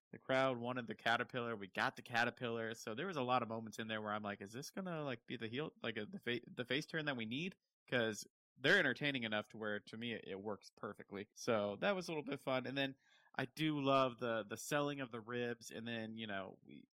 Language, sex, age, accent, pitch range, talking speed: English, male, 30-49, American, 110-135 Hz, 260 wpm